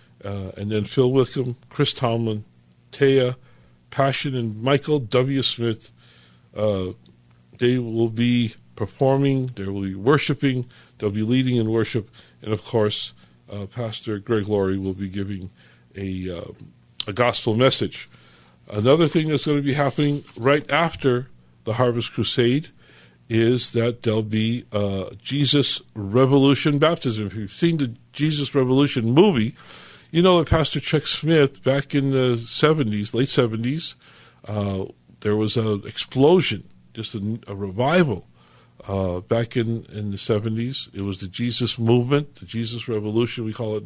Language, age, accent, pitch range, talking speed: English, 50-69, American, 105-135 Hz, 145 wpm